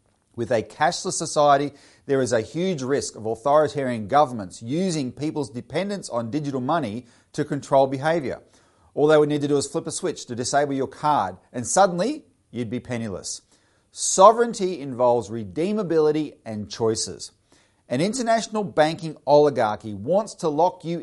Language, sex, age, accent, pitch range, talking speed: English, male, 40-59, Australian, 115-155 Hz, 150 wpm